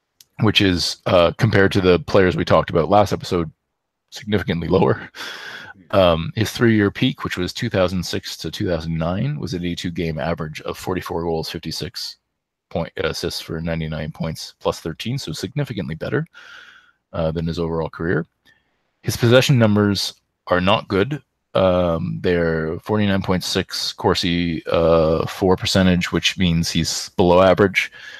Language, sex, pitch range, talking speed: English, male, 80-100 Hz, 135 wpm